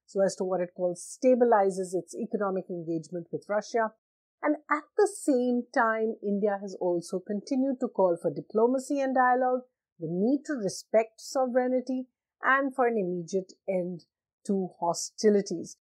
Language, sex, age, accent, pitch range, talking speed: English, female, 50-69, Indian, 175-245 Hz, 150 wpm